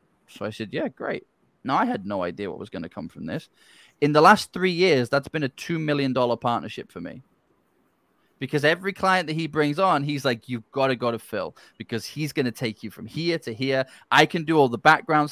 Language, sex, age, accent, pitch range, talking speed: English, male, 20-39, British, 120-155 Hz, 240 wpm